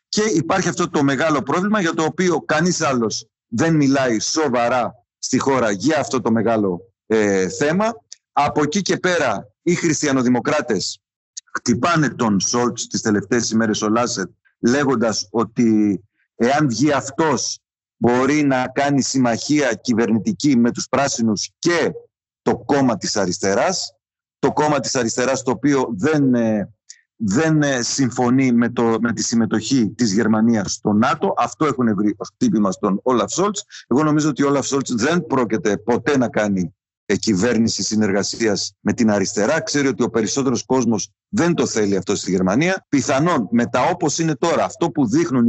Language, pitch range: Greek, 110-155 Hz